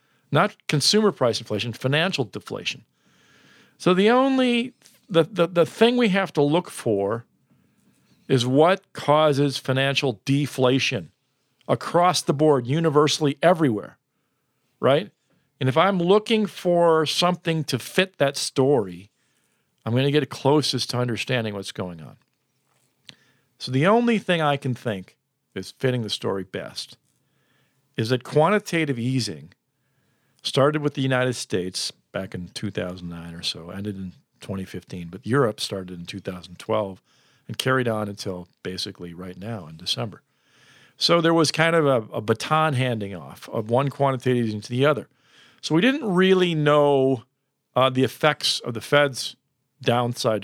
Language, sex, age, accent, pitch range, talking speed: English, male, 50-69, American, 105-150 Hz, 145 wpm